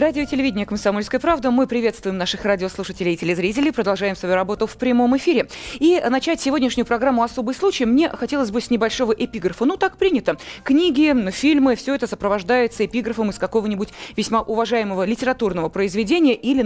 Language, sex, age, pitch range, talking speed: Russian, female, 20-39, 210-285 Hz, 160 wpm